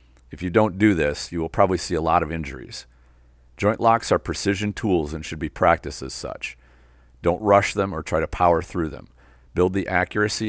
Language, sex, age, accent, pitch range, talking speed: English, male, 50-69, American, 70-100 Hz, 205 wpm